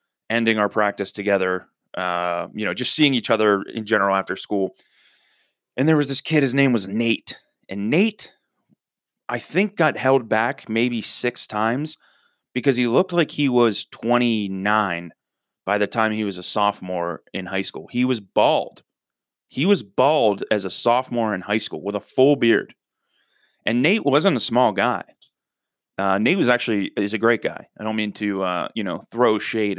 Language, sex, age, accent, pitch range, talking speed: English, male, 30-49, American, 100-120 Hz, 180 wpm